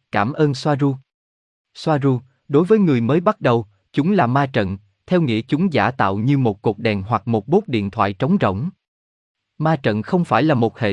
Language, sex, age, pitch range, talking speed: Vietnamese, male, 20-39, 110-155 Hz, 205 wpm